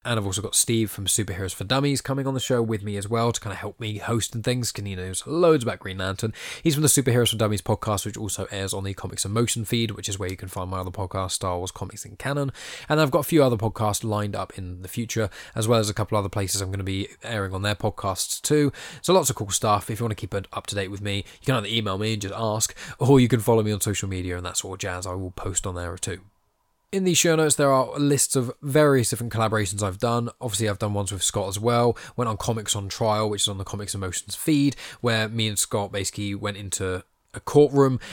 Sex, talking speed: male, 275 wpm